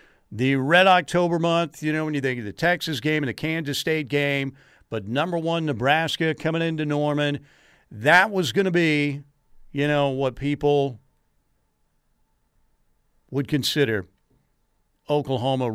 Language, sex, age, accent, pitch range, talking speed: English, male, 50-69, American, 130-160 Hz, 140 wpm